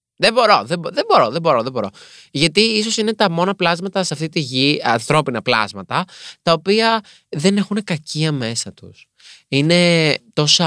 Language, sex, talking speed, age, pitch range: Greek, male, 170 wpm, 20-39, 120-170 Hz